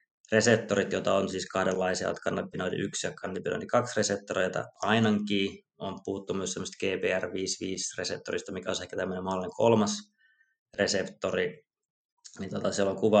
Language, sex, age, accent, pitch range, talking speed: Finnish, male, 20-39, native, 95-110 Hz, 130 wpm